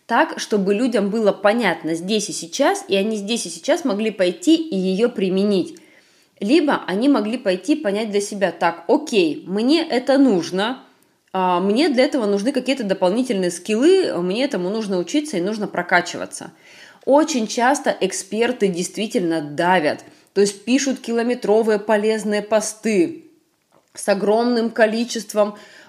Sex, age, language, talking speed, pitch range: female, 20-39, Russian, 135 wpm, 185-250 Hz